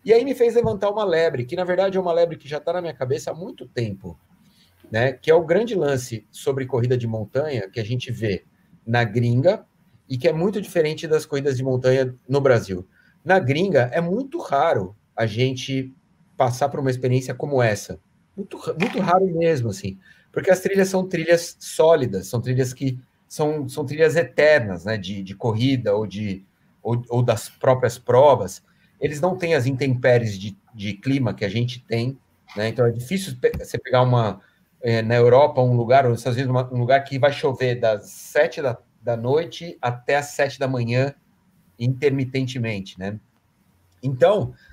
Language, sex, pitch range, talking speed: Portuguese, male, 120-175 Hz, 180 wpm